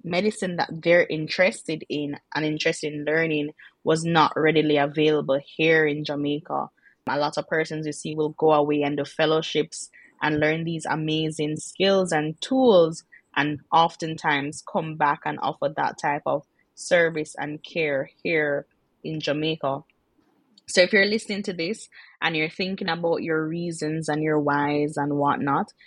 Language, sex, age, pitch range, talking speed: English, female, 20-39, 145-165 Hz, 155 wpm